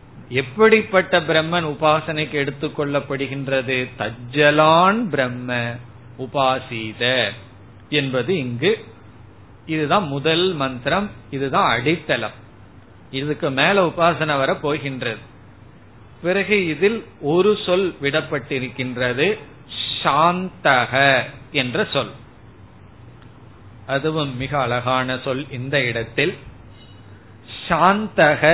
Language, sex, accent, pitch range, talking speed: Tamil, male, native, 120-150 Hz, 65 wpm